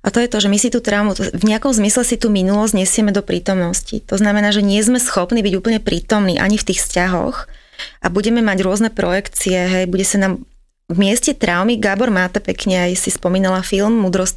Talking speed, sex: 215 wpm, female